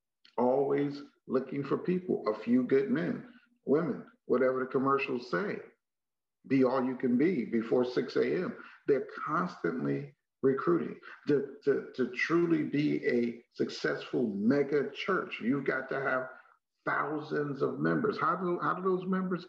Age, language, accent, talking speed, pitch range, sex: 50-69, English, American, 140 wpm, 130-210 Hz, male